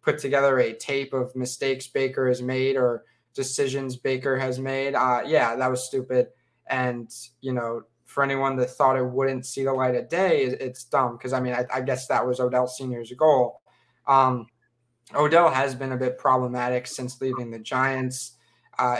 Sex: male